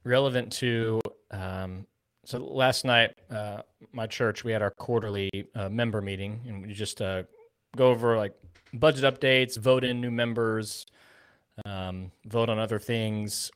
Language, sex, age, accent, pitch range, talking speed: English, male, 20-39, American, 105-130 Hz, 145 wpm